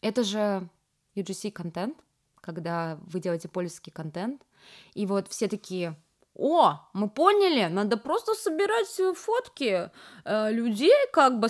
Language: Russian